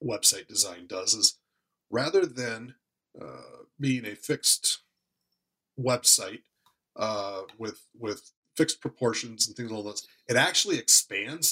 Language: English